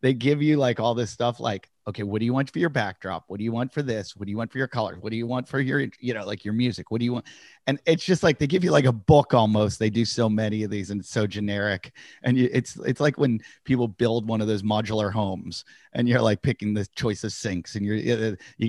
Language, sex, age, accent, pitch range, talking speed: English, male, 40-59, American, 105-130 Hz, 285 wpm